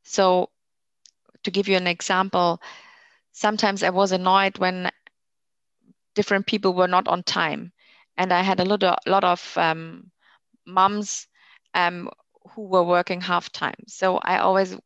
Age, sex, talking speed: 20-39, female, 140 wpm